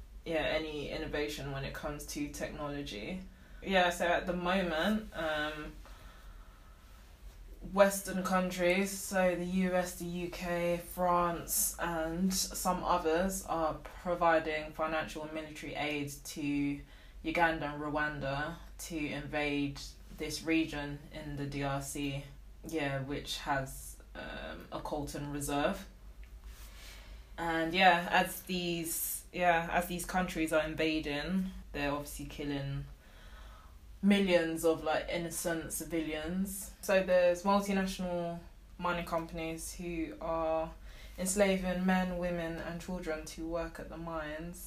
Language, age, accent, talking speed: English, 20-39, British, 120 wpm